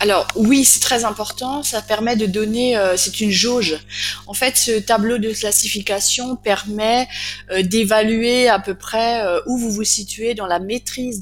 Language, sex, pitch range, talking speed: French, female, 175-225 Hz, 175 wpm